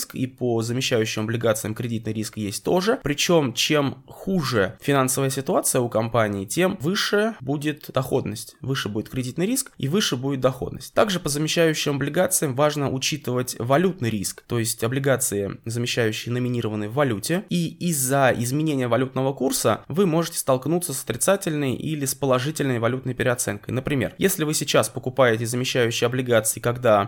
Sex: male